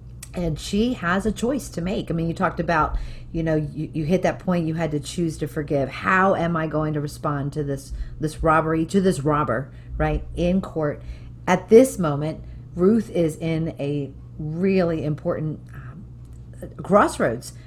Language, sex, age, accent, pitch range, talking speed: English, female, 40-59, American, 155-195 Hz, 175 wpm